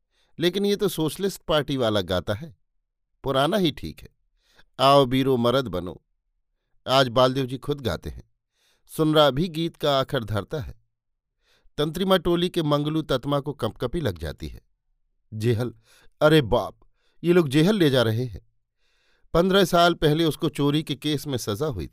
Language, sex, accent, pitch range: Hindi, male, native, 110-145 Hz